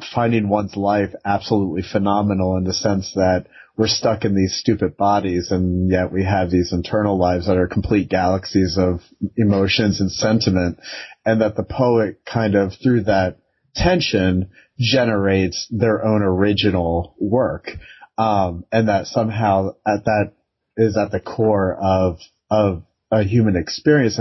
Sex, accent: male, American